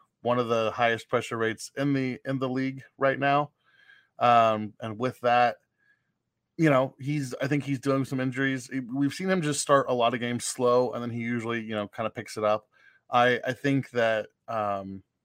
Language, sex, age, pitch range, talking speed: English, male, 20-39, 110-130 Hz, 205 wpm